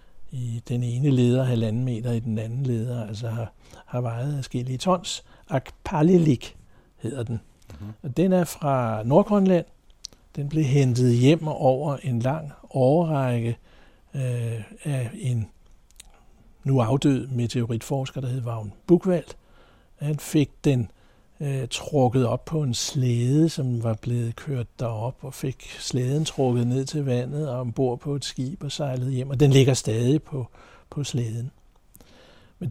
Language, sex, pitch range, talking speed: Danish, male, 120-145 Hz, 145 wpm